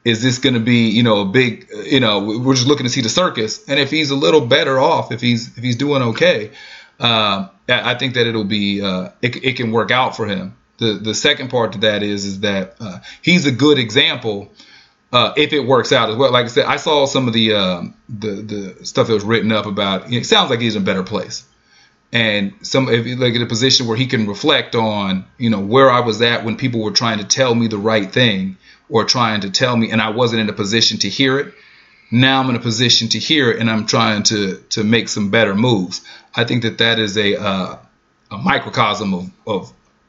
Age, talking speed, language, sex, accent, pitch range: 30-49, 245 wpm, English, male, American, 105-125 Hz